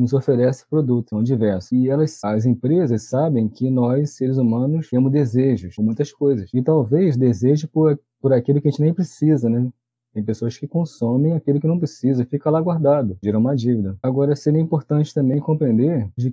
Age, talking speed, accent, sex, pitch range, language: 20-39, 185 wpm, Brazilian, male, 120-155 Hz, Portuguese